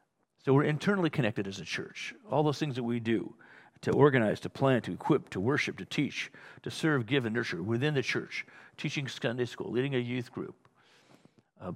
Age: 50-69